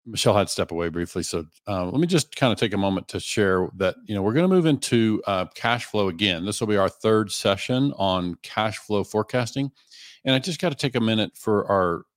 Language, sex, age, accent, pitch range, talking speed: English, male, 50-69, American, 95-120 Hz, 245 wpm